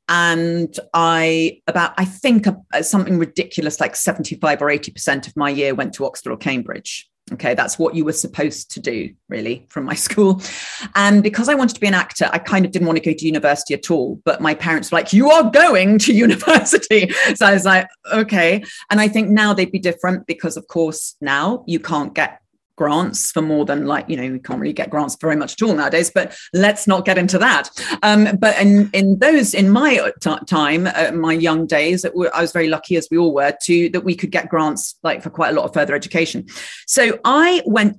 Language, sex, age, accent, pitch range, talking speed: English, female, 40-59, British, 165-210 Hz, 220 wpm